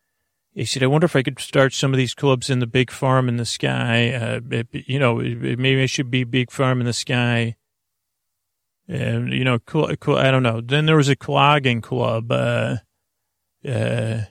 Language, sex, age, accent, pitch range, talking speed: English, male, 40-59, American, 115-135 Hz, 210 wpm